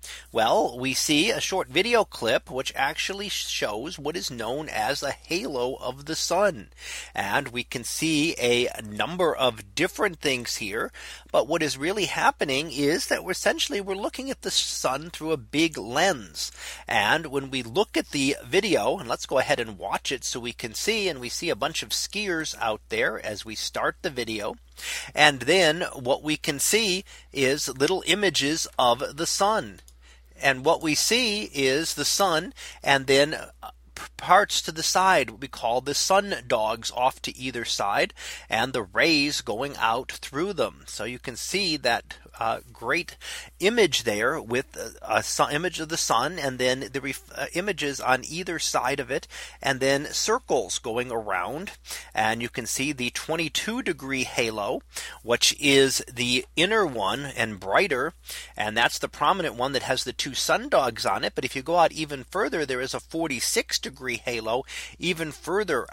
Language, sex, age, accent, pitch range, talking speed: English, male, 40-59, American, 125-165 Hz, 175 wpm